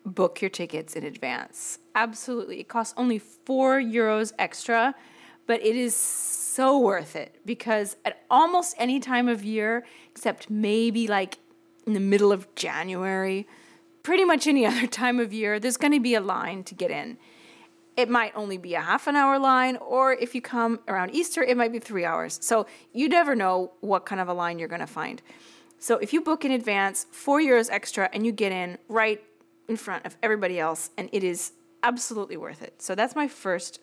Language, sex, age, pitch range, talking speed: English, female, 30-49, 195-250 Hz, 195 wpm